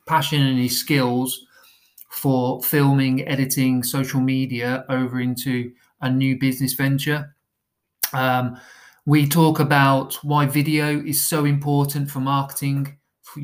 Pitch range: 125-140 Hz